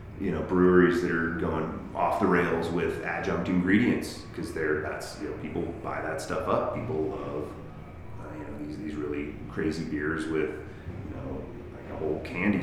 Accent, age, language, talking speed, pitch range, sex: American, 30-49, English, 180 wpm, 75-95 Hz, male